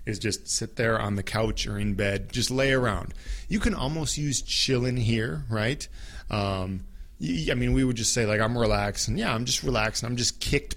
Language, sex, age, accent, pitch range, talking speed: English, male, 20-39, American, 95-120 Hz, 205 wpm